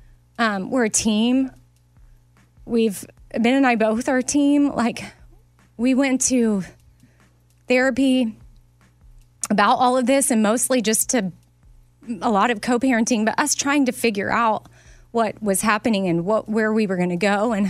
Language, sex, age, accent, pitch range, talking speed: English, female, 20-39, American, 185-240 Hz, 160 wpm